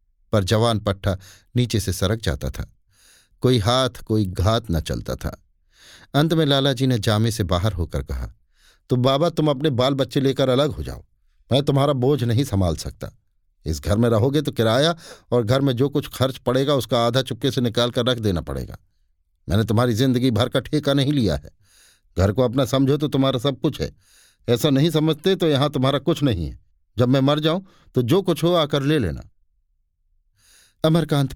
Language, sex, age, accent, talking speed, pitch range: Hindi, male, 50-69, native, 195 wpm, 95-135 Hz